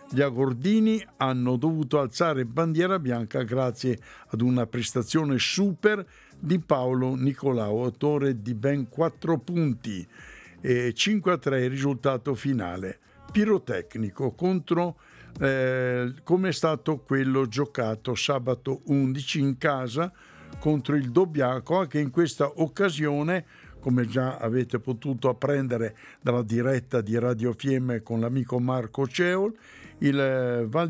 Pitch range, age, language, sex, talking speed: 125-160 Hz, 60-79, Italian, male, 120 wpm